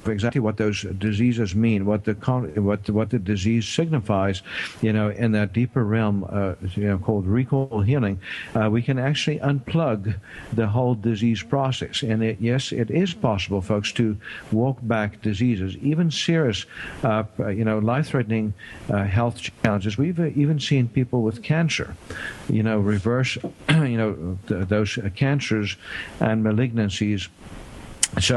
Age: 60-79